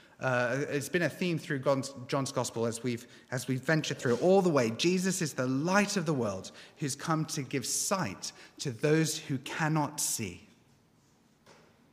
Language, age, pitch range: English, 30-49, 125-155 Hz